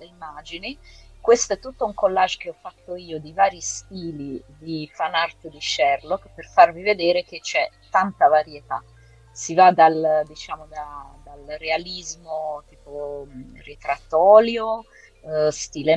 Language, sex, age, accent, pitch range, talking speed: Italian, female, 30-49, native, 145-175 Hz, 140 wpm